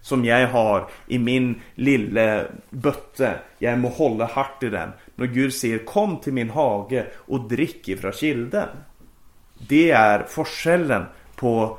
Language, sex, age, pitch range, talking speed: Swedish, male, 30-49, 110-150 Hz, 145 wpm